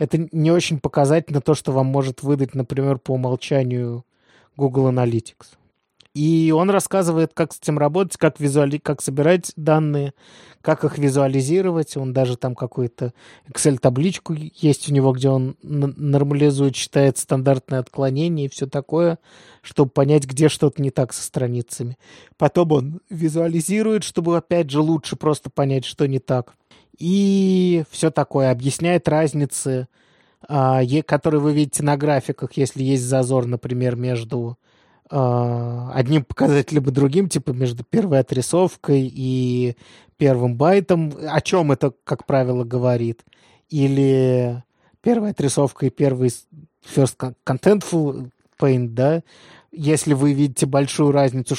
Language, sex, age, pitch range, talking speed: Russian, male, 20-39, 130-155 Hz, 135 wpm